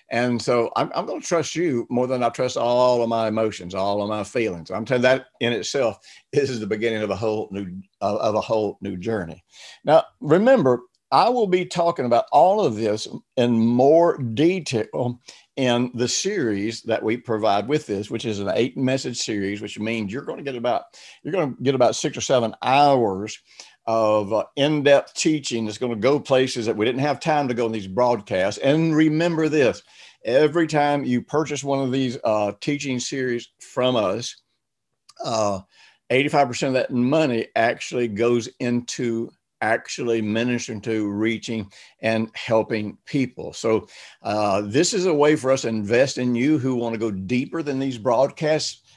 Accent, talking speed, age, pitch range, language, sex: American, 180 wpm, 60-79, 115-150 Hz, English, male